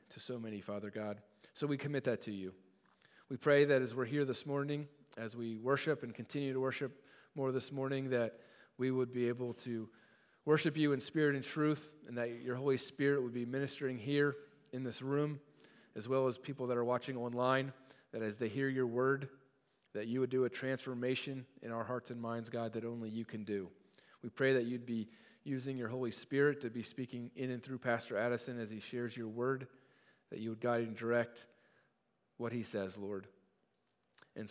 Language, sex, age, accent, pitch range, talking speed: English, male, 40-59, American, 120-140 Hz, 205 wpm